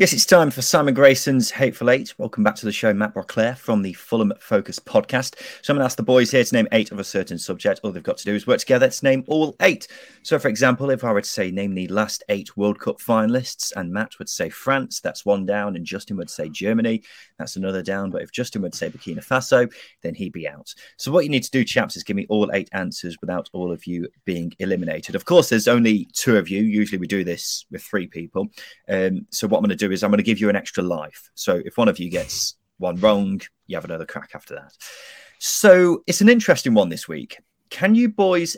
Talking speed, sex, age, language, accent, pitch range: 250 wpm, male, 30-49, English, British, 105-145 Hz